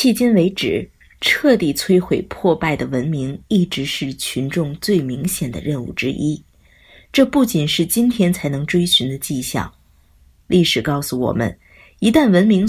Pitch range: 145-210 Hz